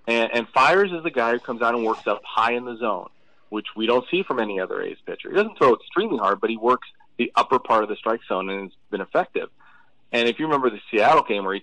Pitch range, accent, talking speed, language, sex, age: 105-155 Hz, American, 275 wpm, English, male, 30-49